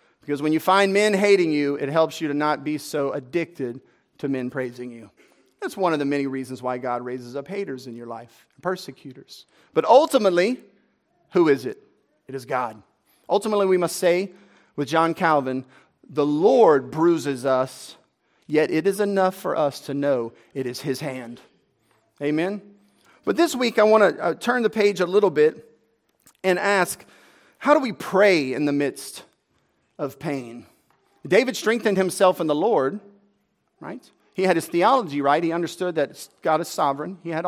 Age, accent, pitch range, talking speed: 40-59, American, 140-190 Hz, 175 wpm